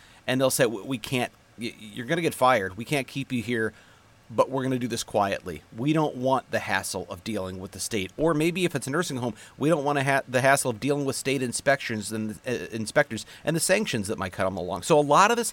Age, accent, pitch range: 40-59, American, 105-140 Hz